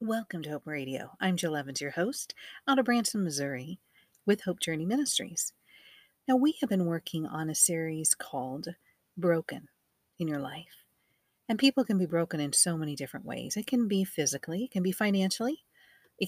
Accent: American